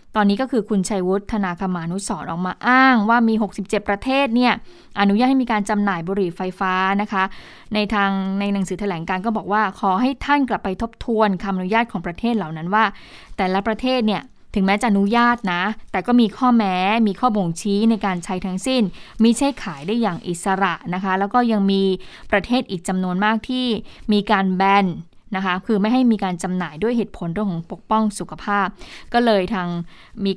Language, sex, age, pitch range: Thai, female, 20-39, 185-225 Hz